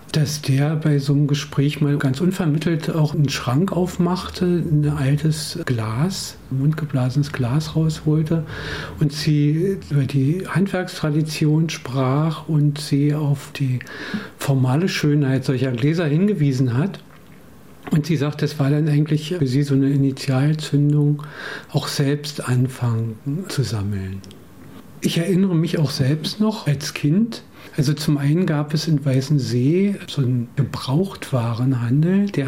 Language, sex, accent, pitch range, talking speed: German, male, German, 135-160 Hz, 135 wpm